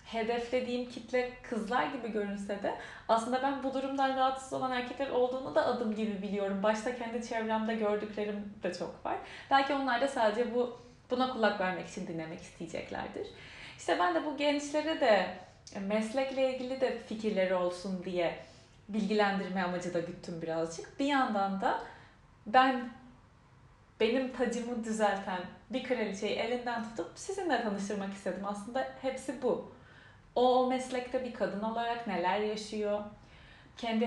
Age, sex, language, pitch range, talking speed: 30-49, female, Turkish, 205-260 Hz, 135 wpm